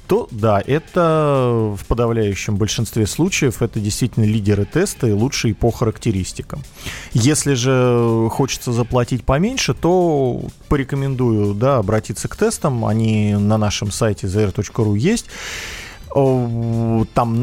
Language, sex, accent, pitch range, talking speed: Russian, male, native, 110-145 Hz, 105 wpm